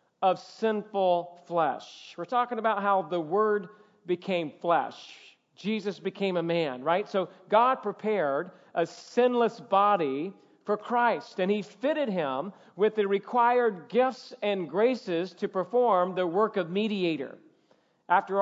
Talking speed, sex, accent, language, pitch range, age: 135 wpm, male, American, English, 185-225 Hz, 40-59